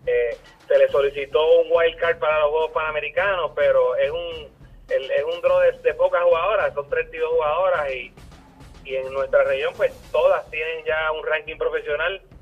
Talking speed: 180 wpm